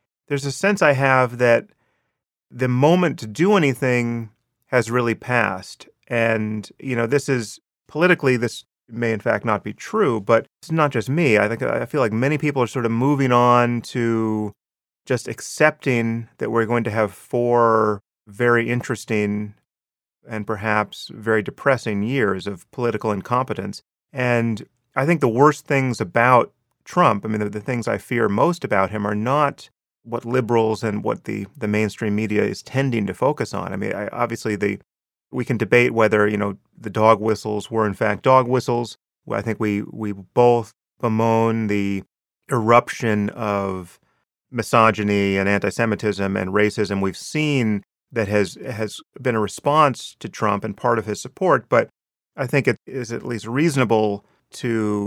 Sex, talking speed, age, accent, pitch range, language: male, 170 wpm, 30-49, American, 105-125 Hz, English